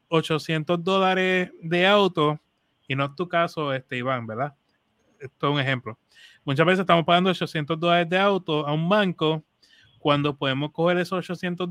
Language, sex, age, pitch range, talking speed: Spanish, male, 30-49, 150-185 Hz, 165 wpm